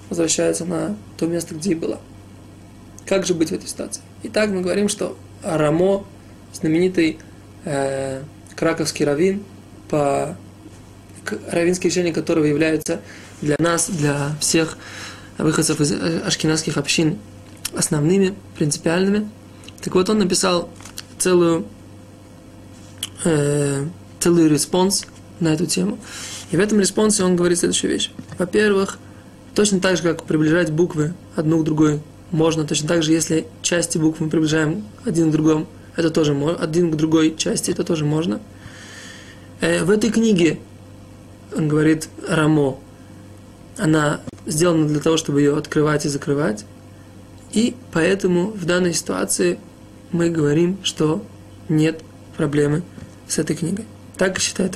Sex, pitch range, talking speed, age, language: male, 105-175 Hz, 125 wpm, 20-39, Russian